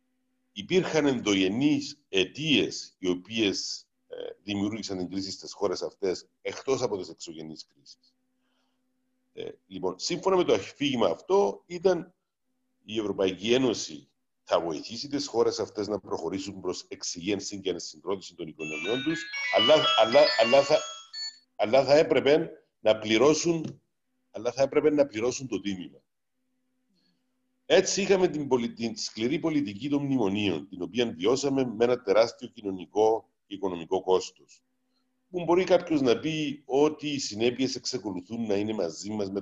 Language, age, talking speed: Greek, 50-69, 135 wpm